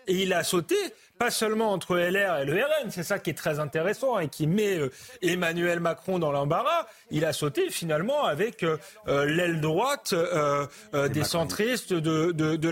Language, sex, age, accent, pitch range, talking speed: French, male, 30-49, French, 180-230 Hz, 170 wpm